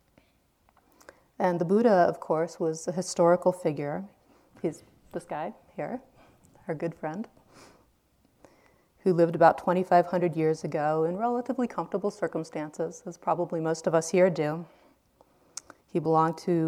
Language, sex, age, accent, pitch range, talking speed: English, female, 30-49, American, 165-200 Hz, 130 wpm